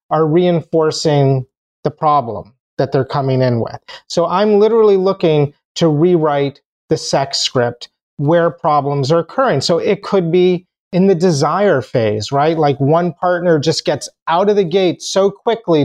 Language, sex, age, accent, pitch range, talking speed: English, male, 30-49, American, 140-185 Hz, 160 wpm